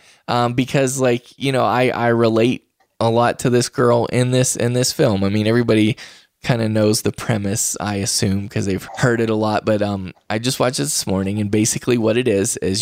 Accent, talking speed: American, 230 wpm